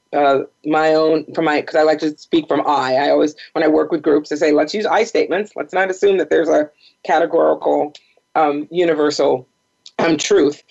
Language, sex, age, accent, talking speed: English, female, 40-59, American, 200 wpm